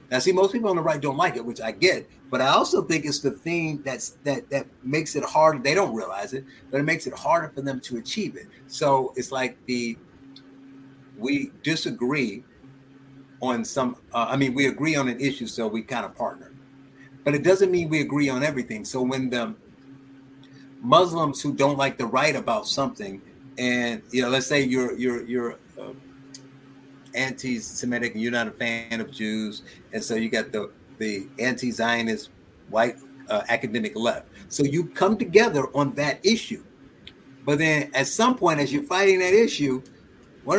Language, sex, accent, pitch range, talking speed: English, male, American, 130-170 Hz, 185 wpm